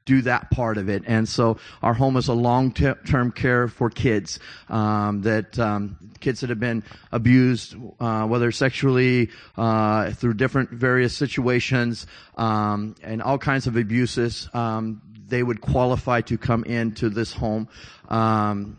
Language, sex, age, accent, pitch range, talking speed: English, male, 30-49, American, 110-125 Hz, 155 wpm